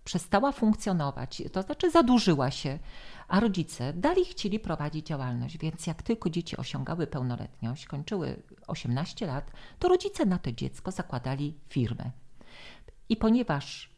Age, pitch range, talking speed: 50-69, 135-180 Hz, 130 wpm